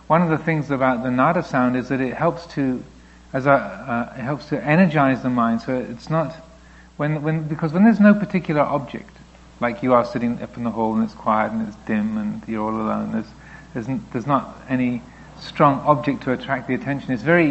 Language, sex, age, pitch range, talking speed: English, male, 40-59, 120-155 Hz, 235 wpm